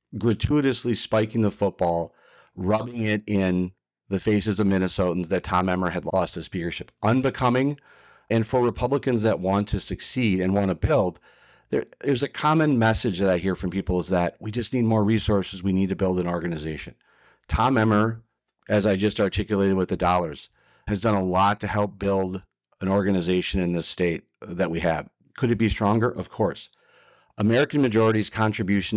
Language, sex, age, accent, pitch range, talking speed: English, male, 40-59, American, 95-110 Hz, 180 wpm